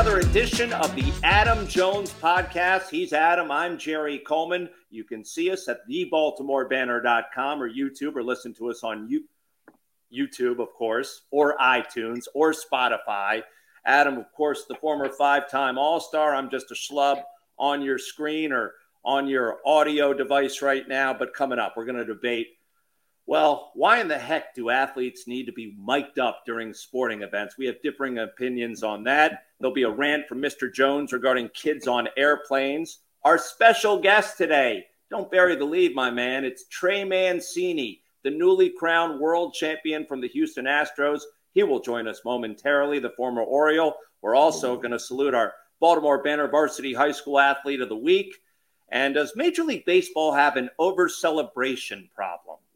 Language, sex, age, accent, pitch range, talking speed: English, male, 50-69, American, 130-180 Hz, 165 wpm